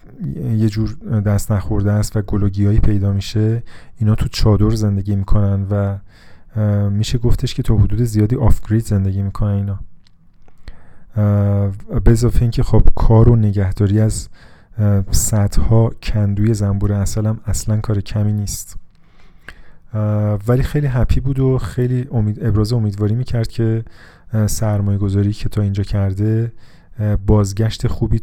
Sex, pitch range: male, 100-115 Hz